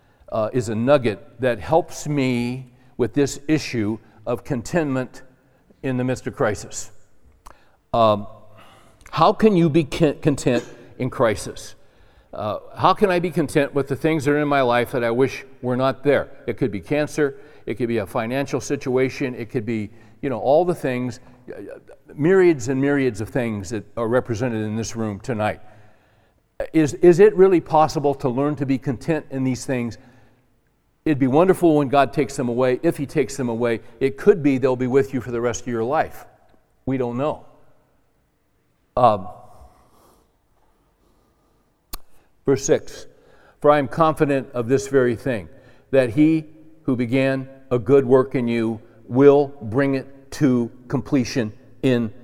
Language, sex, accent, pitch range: English, male, American, 115-145 Hz